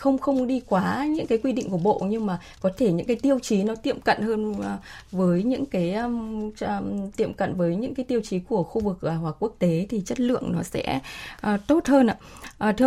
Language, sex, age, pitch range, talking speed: Vietnamese, female, 20-39, 180-245 Hz, 240 wpm